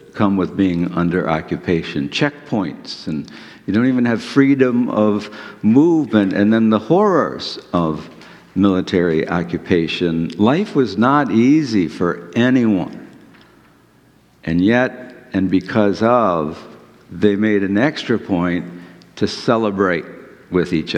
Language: English